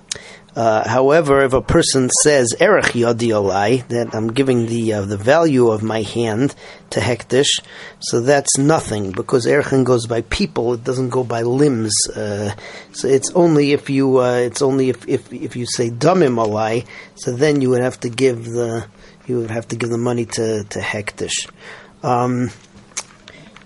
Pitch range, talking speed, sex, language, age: 115-135 Hz, 175 wpm, male, English, 40-59